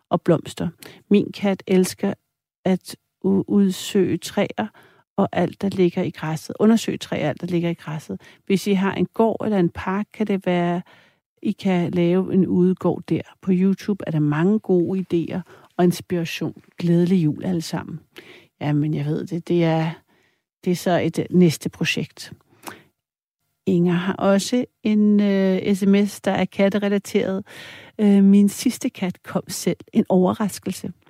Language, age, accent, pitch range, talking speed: Danish, 60-79, native, 170-205 Hz, 155 wpm